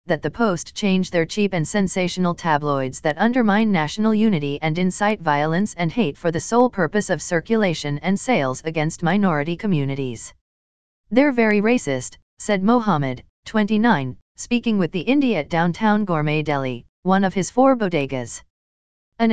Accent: American